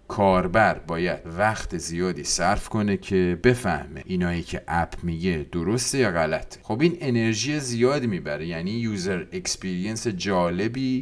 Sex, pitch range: male, 90-130 Hz